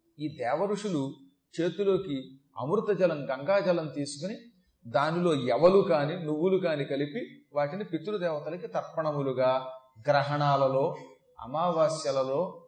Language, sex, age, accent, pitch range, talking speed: Telugu, male, 40-59, native, 150-205 Hz, 80 wpm